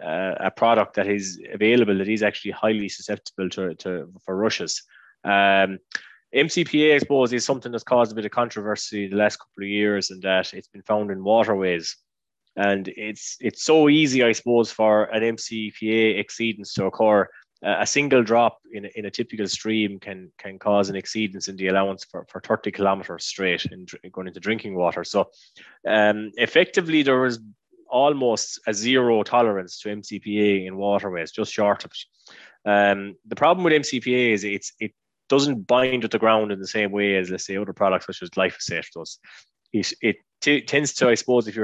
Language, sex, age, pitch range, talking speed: English, male, 20-39, 100-120 Hz, 185 wpm